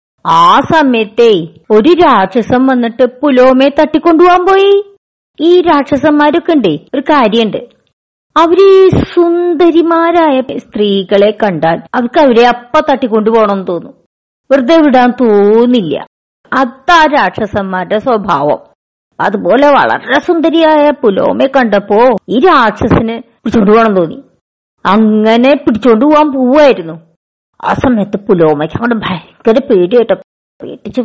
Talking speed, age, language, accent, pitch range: 95 wpm, 50-69, Malayalam, native, 205-305 Hz